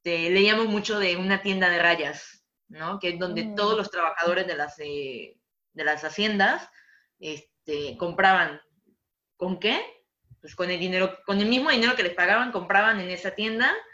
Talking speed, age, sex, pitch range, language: 165 wpm, 20-39, female, 170-205 Hz, English